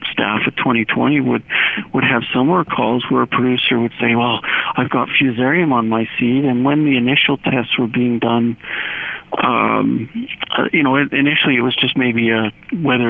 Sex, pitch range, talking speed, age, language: male, 115-135 Hz, 180 wpm, 50-69, English